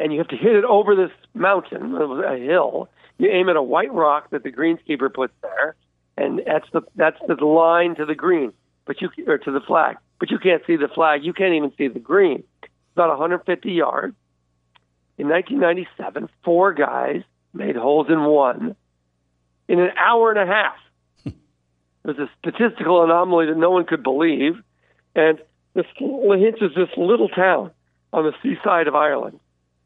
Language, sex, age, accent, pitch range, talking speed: English, male, 60-79, American, 115-190 Hz, 175 wpm